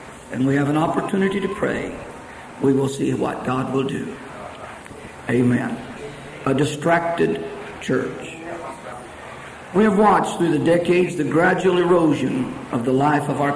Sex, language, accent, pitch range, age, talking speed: male, English, American, 155-200 Hz, 50-69, 140 wpm